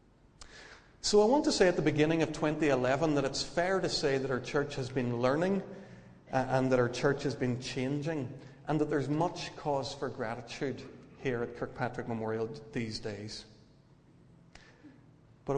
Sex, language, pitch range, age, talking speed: male, English, 120-150 Hz, 40-59, 160 wpm